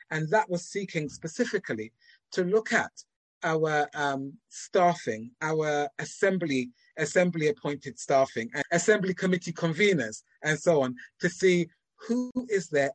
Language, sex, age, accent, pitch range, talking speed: English, male, 30-49, British, 145-185 Hz, 125 wpm